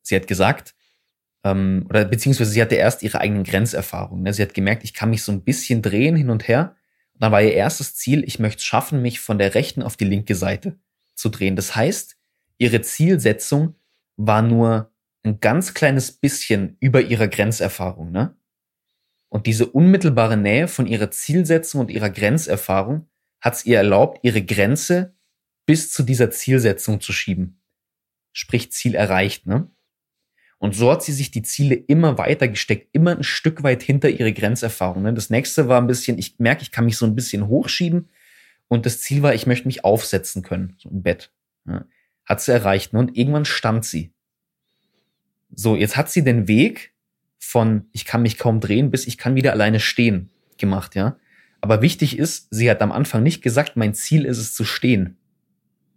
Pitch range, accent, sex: 105-140 Hz, German, male